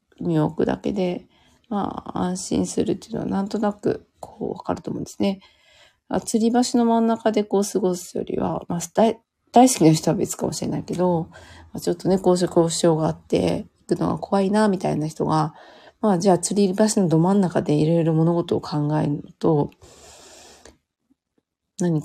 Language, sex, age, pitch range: Japanese, female, 40-59, 160-200 Hz